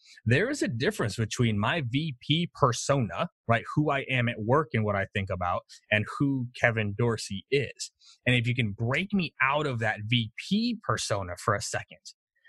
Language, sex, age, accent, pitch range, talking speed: English, male, 30-49, American, 110-145 Hz, 185 wpm